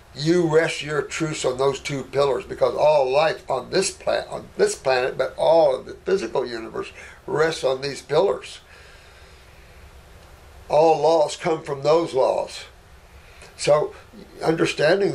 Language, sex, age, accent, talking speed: English, male, 60-79, American, 140 wpm